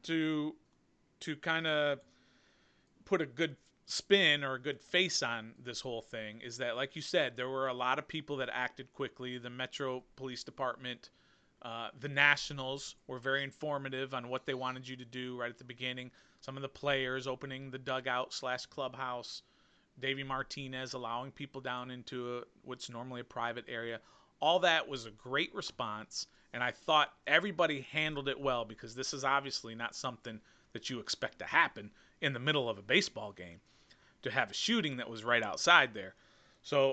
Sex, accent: male, American